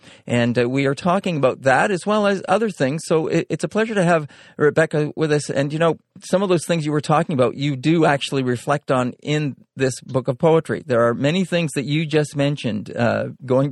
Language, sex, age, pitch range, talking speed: English, male, 40-59, 120-150 Hz, 230 wpm